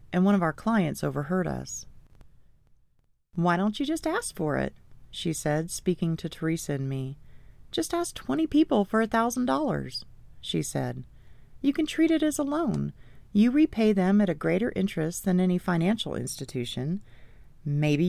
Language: English